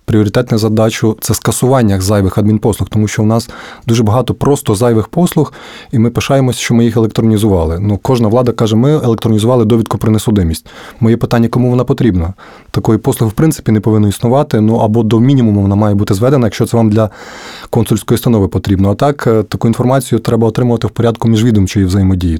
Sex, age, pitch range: male, 20-39, 105-120 Hz